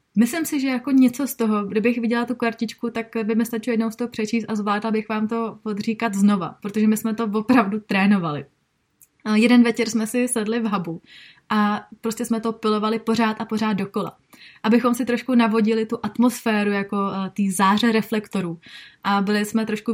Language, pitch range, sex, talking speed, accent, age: Czech, 210-235 Hz, female, 185 wpm, native, 20-39